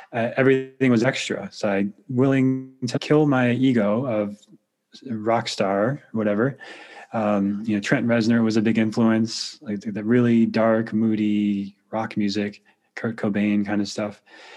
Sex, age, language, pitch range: male, 20-39, English, 105-120 Hz